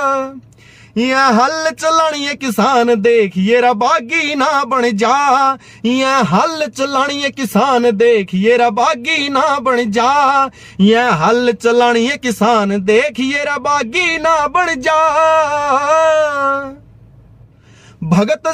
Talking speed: 100 wpm